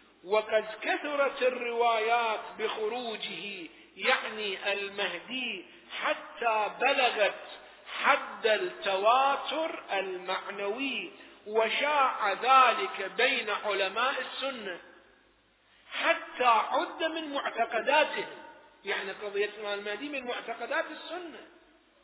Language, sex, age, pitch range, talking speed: Arabic, male, 50-69, 210-300 Hz, 70 wpm